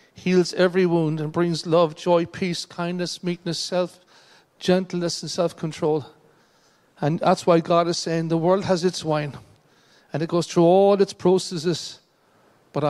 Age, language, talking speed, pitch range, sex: 60-79, English, 150 wpm, 155-180 Hz, male